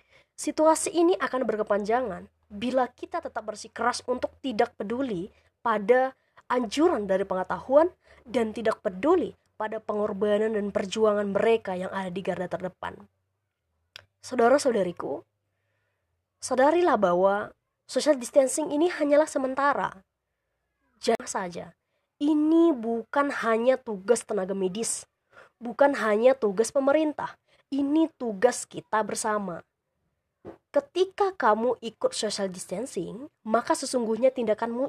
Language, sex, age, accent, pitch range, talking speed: Indonesian, female, 20-39, native, 200-265 Hz, 105 wpm